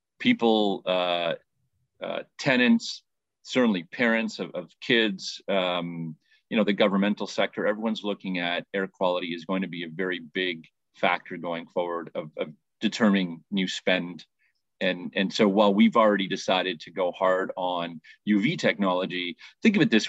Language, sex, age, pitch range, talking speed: English, male, 40-59, 90-110 Hz, 155 wpm